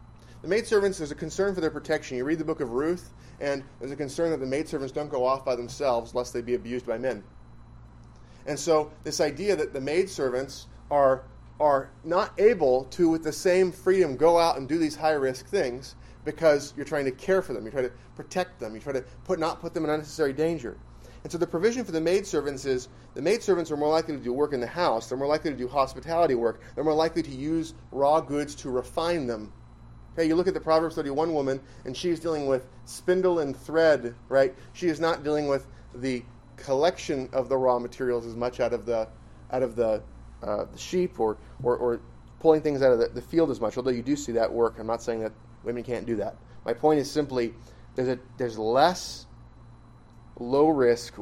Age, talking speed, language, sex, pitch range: 30-49, 215 wpm, English, male, 120-160 Hz